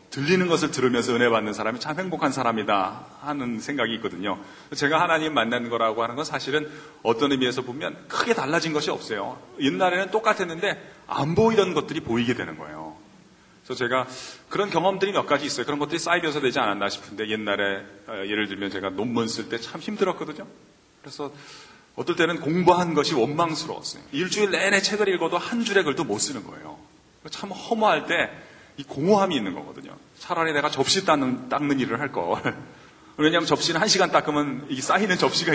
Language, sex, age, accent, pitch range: Korean, male, 40-59, native, 120-180 Hz